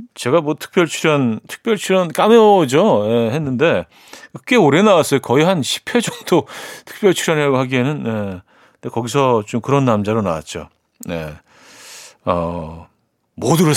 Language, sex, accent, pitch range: Korean, male, native, 110-165 Hz